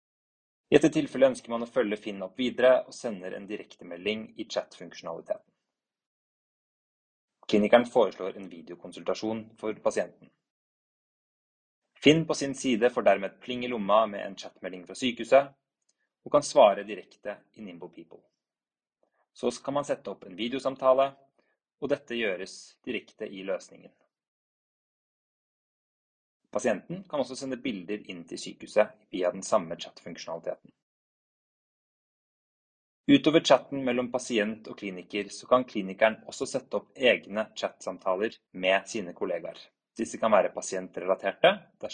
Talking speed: 125 wpm